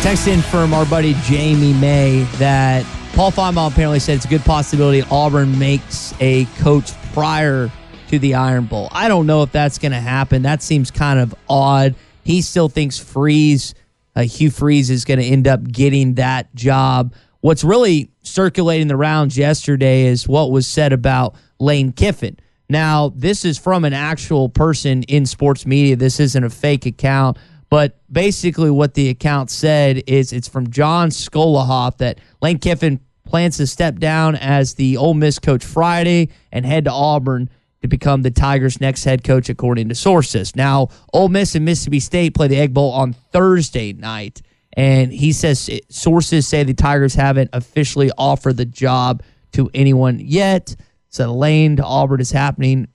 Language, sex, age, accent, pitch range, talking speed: English, male, 20-39, American, 130-150 Hz, 170 wpm